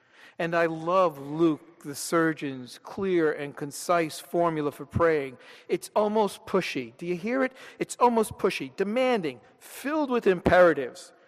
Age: 50-69